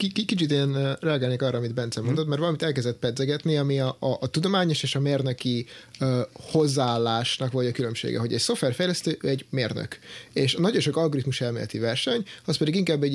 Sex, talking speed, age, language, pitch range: male, 180 wpm, 30-49, Hungarian, 120-155 Hz